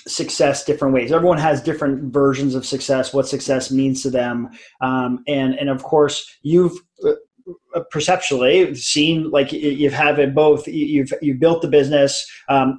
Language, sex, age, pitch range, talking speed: English, male, 30-49, 135-170 Hz, 160 wpm